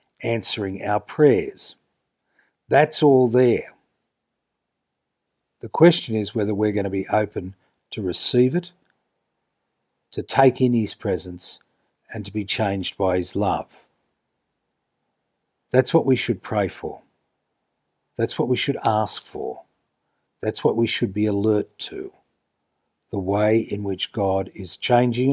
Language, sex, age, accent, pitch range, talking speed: English, male, 60-79, Australian, 105-130 Hz, 135 wpm